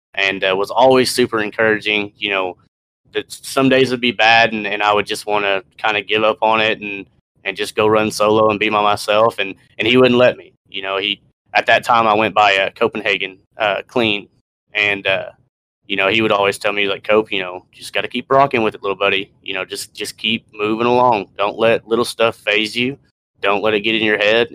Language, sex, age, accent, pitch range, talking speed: English, male, 20-39, American, 95-115 Hz, 245 wpm